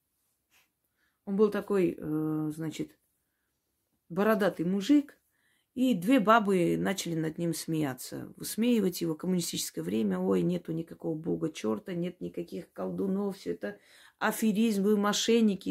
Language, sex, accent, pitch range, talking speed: Russian, female, native, 165-225 Hz, 110 wpm